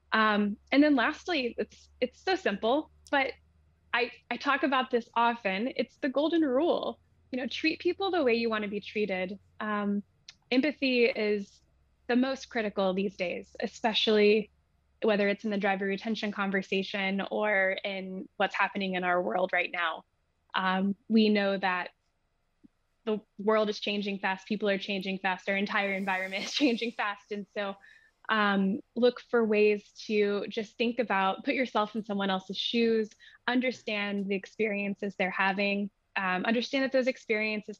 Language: English